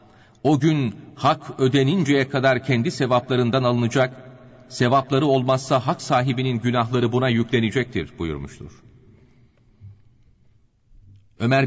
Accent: native